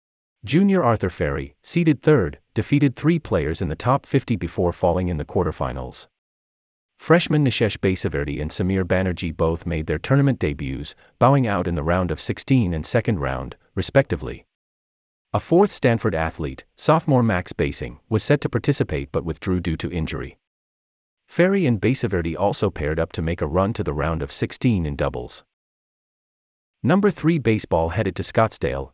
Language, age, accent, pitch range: English, 40-59, American, 75-120 Hz